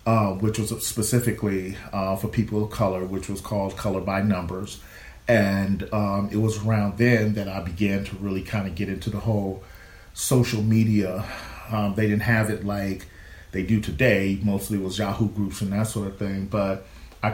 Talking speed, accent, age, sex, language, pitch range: 190 wpm, American, 40-59, male, English, 95-110 Hz